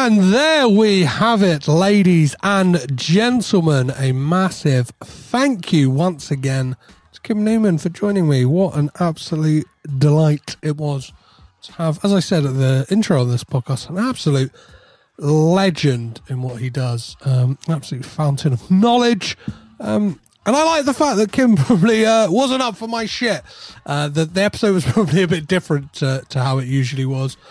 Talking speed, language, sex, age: 175 wpm, English, male, 30-49